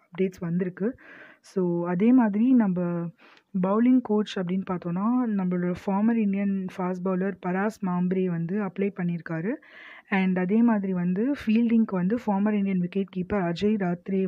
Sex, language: female, Tamil